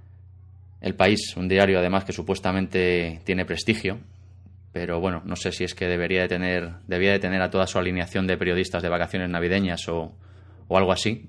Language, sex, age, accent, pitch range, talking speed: Spanish, male, 20-39, Spanish, 90-95 Hz, 185 wpm